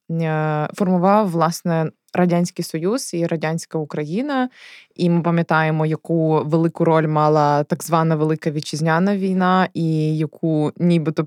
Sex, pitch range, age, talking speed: female, 155-190 Hz, 20-39, 115 wpm